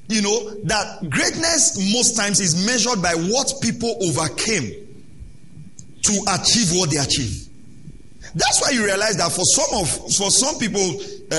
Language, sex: English, male